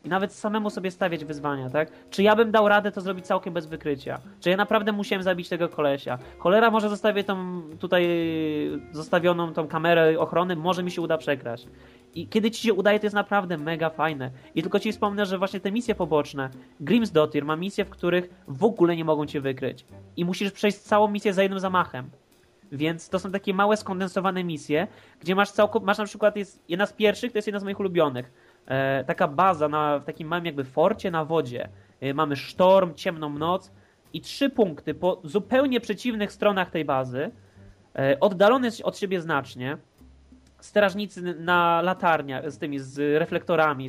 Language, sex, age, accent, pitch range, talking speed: Polish, male, 20-39, native, 150-205 Hz, 185 wpm